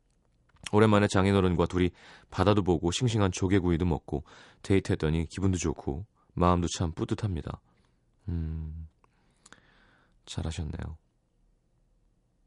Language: Korean